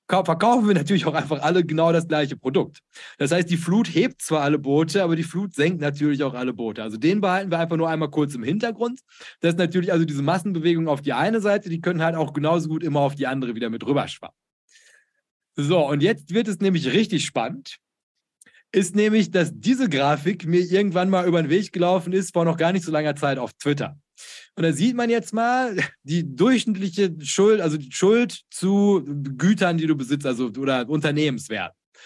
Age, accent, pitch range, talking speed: 30-49, German, 150-195 Hz, 205 wpm